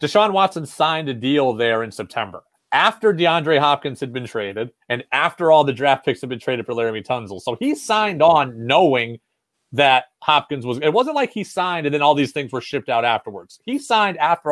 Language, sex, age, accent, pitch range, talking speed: English, male, 30-49, American, 120-155 Hz, 210 wpm